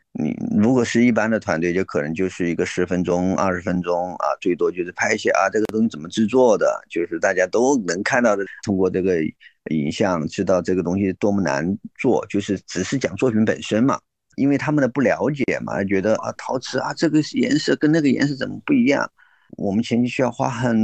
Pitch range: 100-130 Hz